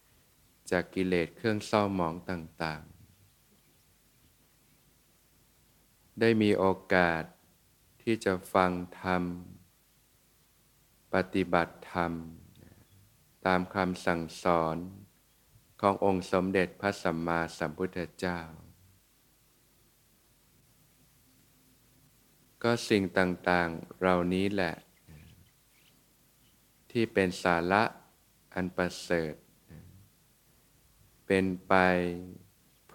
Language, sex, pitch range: Thai, male, 90-105 Hz